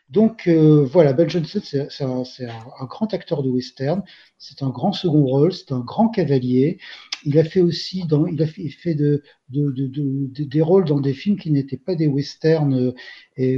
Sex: male